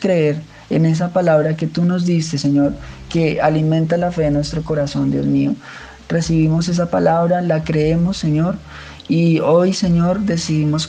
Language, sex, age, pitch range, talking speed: Spanish, male, 20-39, 155-175 Hz, 155 wpm